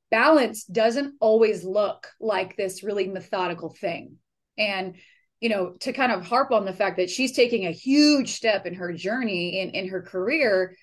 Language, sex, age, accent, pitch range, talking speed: English, female, 20-39, American, 190-250 Hz, 175 wpm